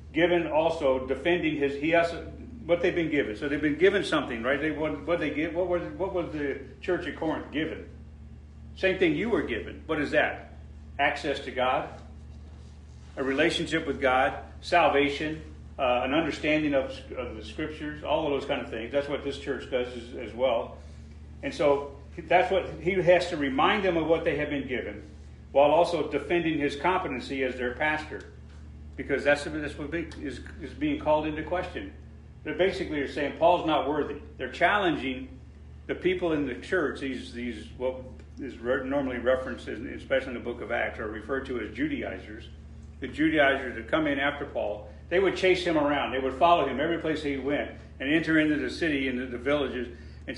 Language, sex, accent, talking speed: English, male, American, 185 wpm